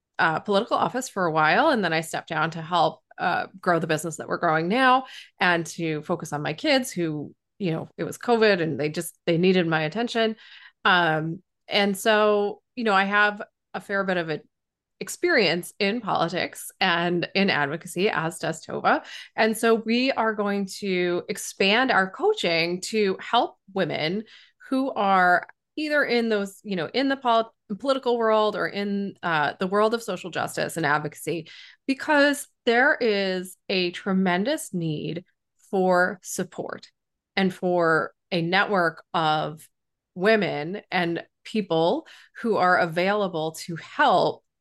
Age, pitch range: 20-39, 170-220 Hz